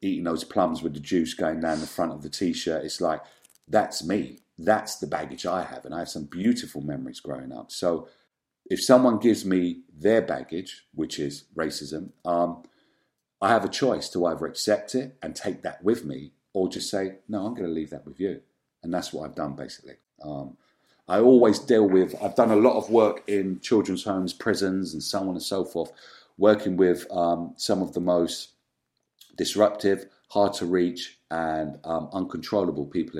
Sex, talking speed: male, 195 wpm